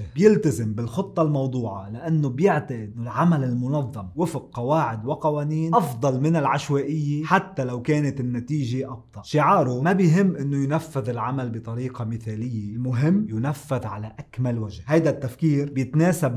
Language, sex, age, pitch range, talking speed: Arabic, male, 30-49, 125-150 Hz, 130 wpm